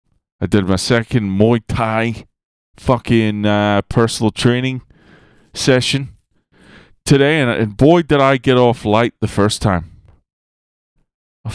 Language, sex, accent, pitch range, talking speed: English, male, American, 95-120 Hz, 125 wpm